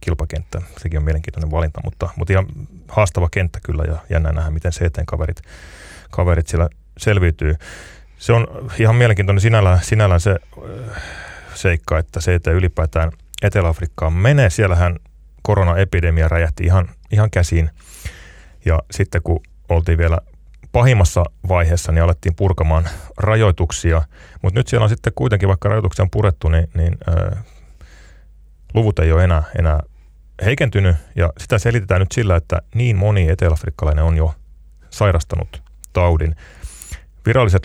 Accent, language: native, Finnish